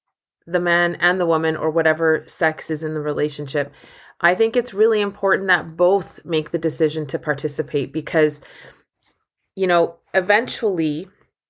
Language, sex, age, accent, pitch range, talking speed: English, female, 30-49, American, 160-200 Hz, 145 wpm